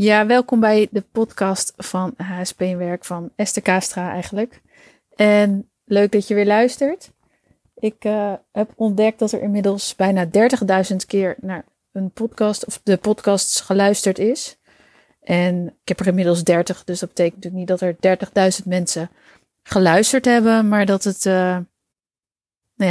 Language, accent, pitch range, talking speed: Dutch, Dutch, 180-210 Hz, 150 wpm